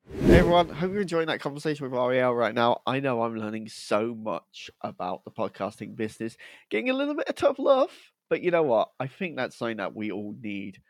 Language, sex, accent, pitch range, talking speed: English, male, British, 105-165 Hz, 220 wpm